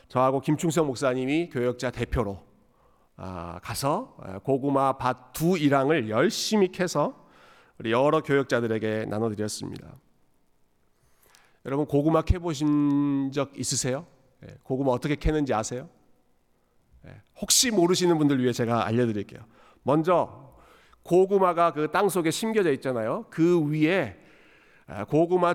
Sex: male